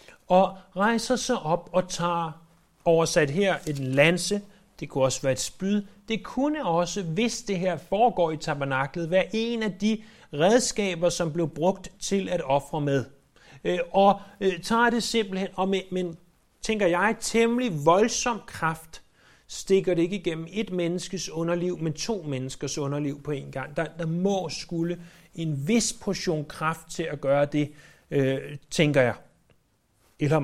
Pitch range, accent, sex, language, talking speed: 140-190 Hz, native, male, Danish, 150 wpm